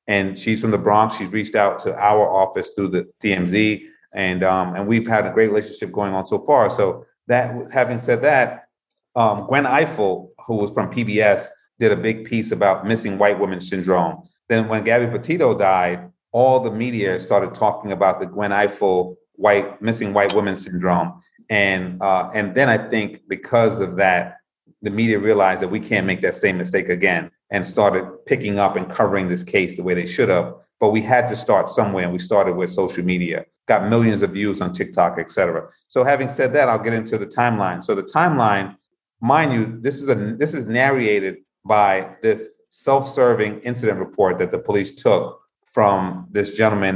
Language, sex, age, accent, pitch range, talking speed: English, male, 30-49, American, 95-115 Hz, 190 wpm